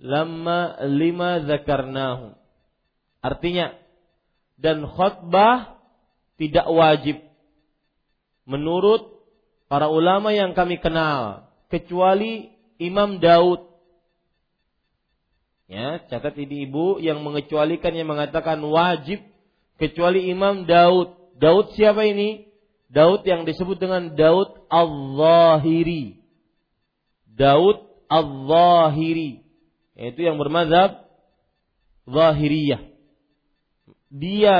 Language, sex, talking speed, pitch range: Malay, male, 80 wpm, 150-180 Hz